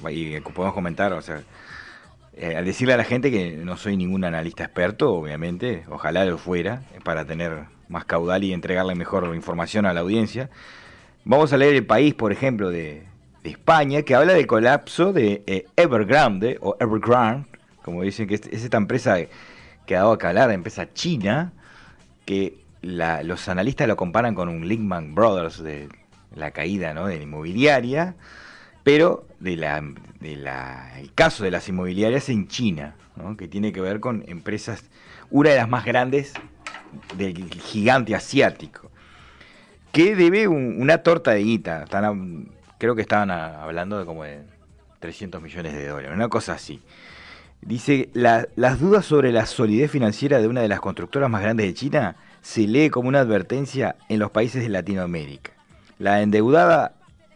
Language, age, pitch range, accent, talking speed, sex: Spanish, 30-49, 85-120 Hz, Argentinian, 170 wpm, male